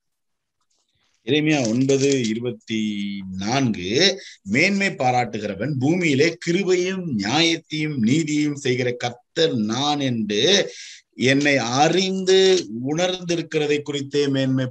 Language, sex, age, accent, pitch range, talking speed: Tamil, male, 50-69, native, 130-175 Hz, 80 wpm